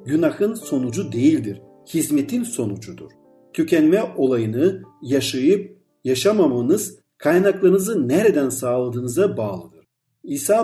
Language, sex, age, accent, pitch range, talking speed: Turkish, male, 50-69, native, 130-200 Hz, 80 wpm